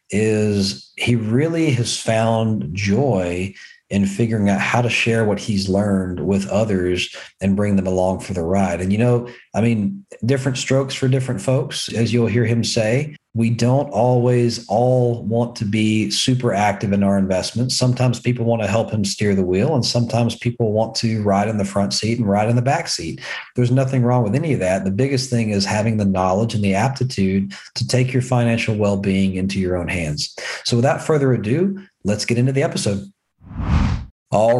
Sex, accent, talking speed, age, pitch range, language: male, American, 195 wpm, 40-59, 105-130 Hz, English